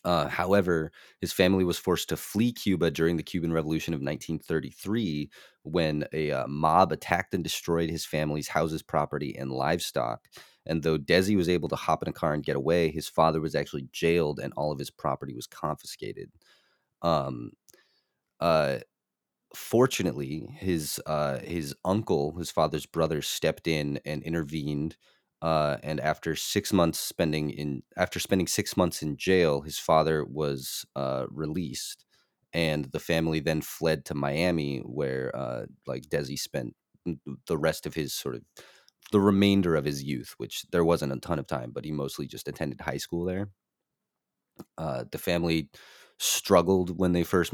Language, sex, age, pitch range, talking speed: English, male, 30-49, 75-85 Hz, 165 wpm